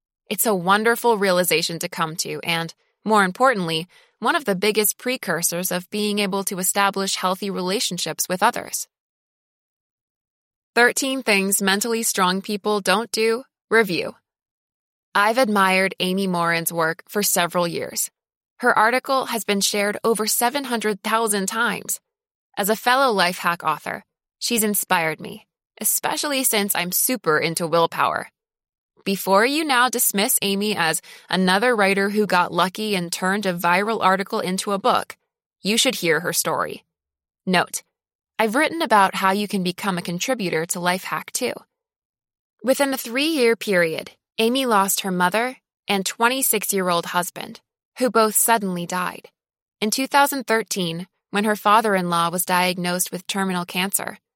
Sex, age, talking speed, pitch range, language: female, 20-39, 140 wpm, 180-225 Hz, English